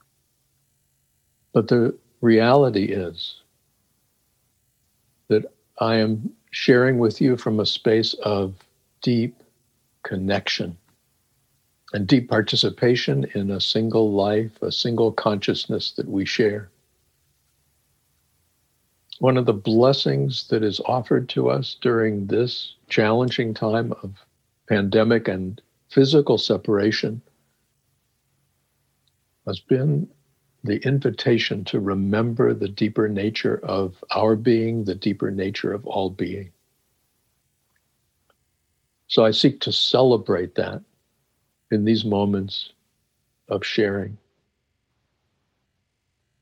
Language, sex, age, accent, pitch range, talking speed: English, male, 60-79, American, 100-125 Hz, 100 wpm